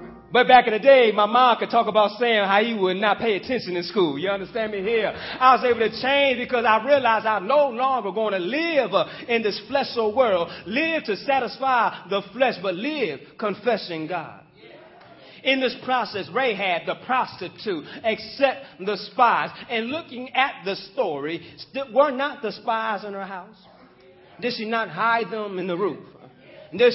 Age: 30-49